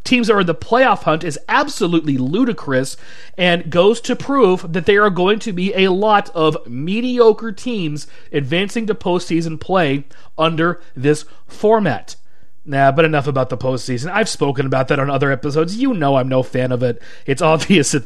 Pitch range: 140-185 Hz